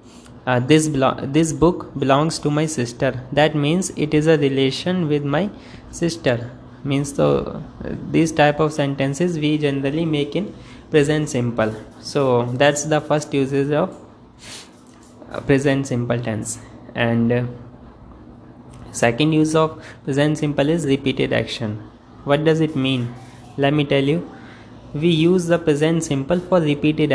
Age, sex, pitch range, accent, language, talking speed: 20-39, male, 125-150 Hz, Indian, English, 145 wpm